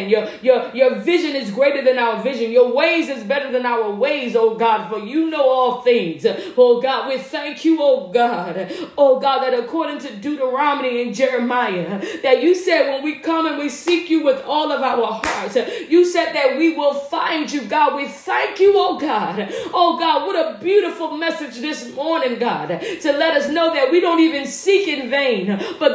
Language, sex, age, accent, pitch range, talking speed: English, female, 40-59, American, 270-340 Hz, 200 wpm